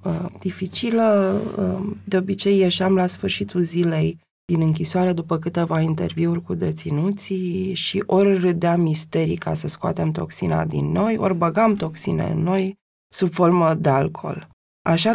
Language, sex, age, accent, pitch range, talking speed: Romanian, female, 20-39, native, 160-205 Hz, 135 wpm